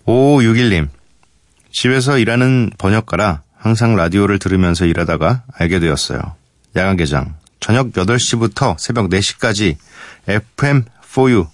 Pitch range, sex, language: 85-115 Hz, male, Korean